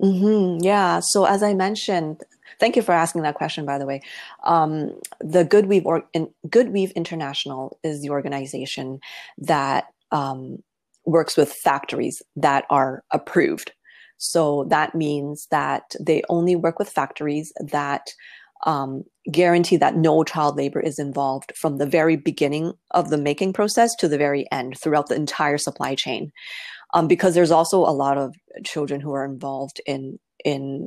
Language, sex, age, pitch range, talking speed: English, female, 30-49, 140-175 Hz, 155 wpm